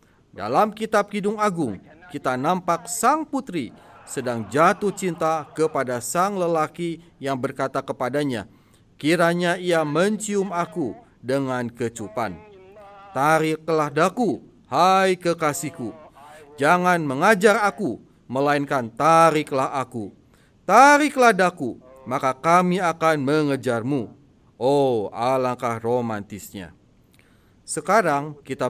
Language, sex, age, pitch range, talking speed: Indonesian, male, 40-59, 135-185 Hz, 90 wpm